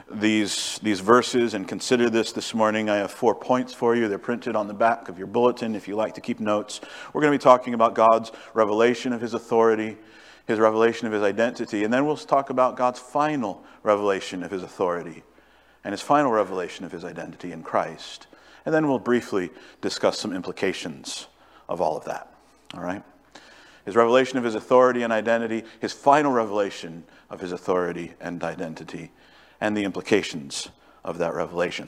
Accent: American